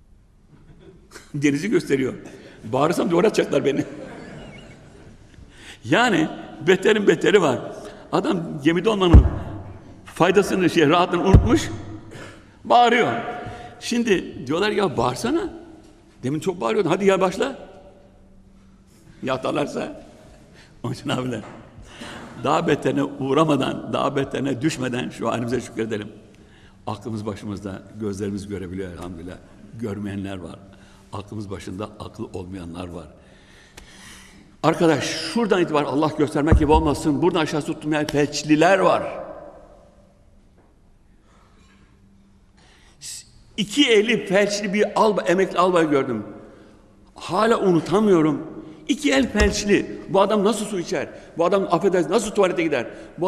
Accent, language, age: native, Turkish, 60-79